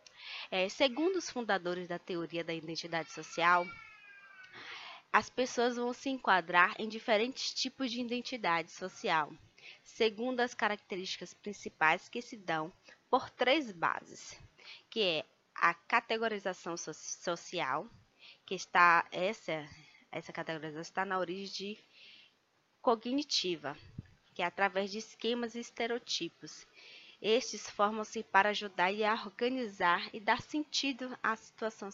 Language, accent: Portuguese, Brazilian